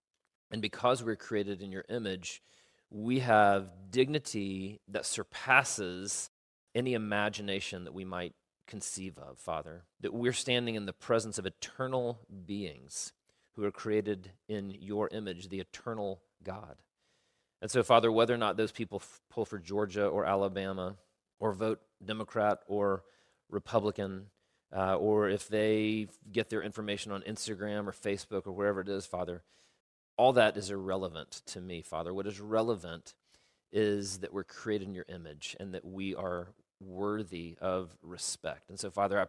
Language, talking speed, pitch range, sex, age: English, 155 wpm, 90-105 Hz, male, 40-59